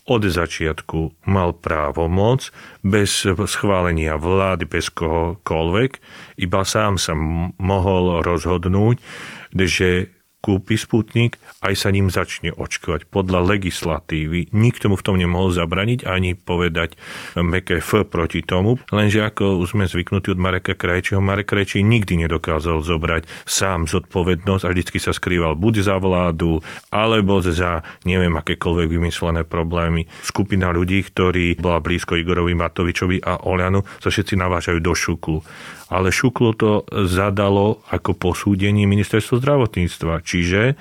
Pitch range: 85-105 Hz